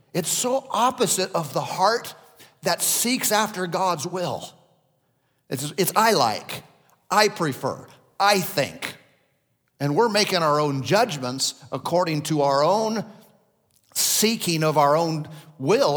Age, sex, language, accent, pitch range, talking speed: 50-69, male, English, American, 135-180 Hz, 130 wpm